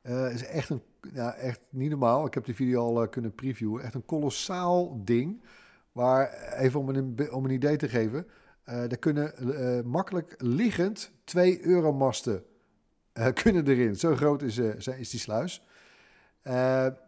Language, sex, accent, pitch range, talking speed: Dutch, male, Dutch, 120-150 Hz, 170 wpm